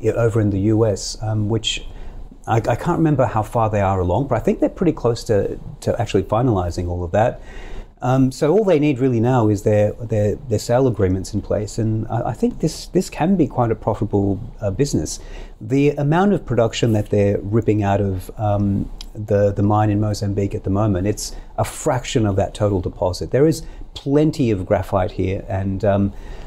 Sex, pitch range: male, 100-130 Hz